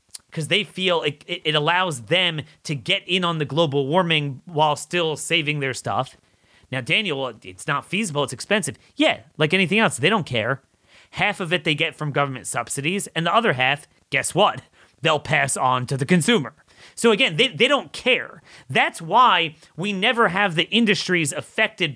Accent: American